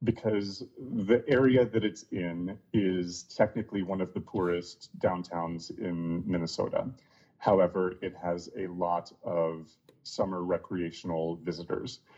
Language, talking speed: English, 120 wpm